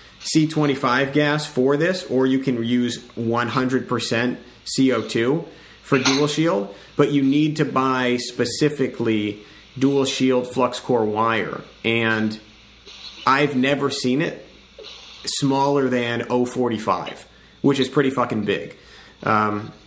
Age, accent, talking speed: 30-49, American, 115 wpm